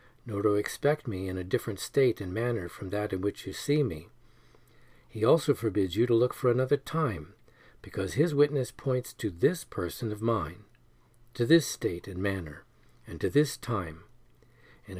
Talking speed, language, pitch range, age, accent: 180 wpm, English, 105-130 Hz, 50-69, American